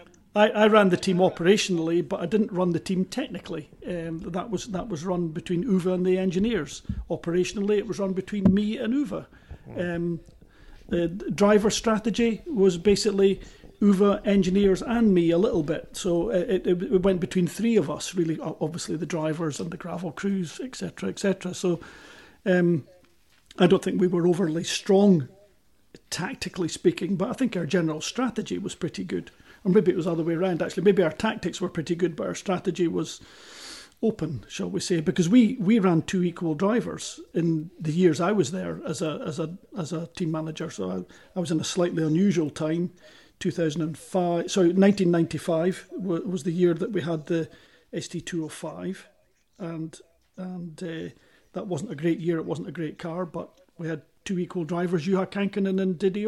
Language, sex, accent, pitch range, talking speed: English, male, British, 170-195 Hz, 185 wpm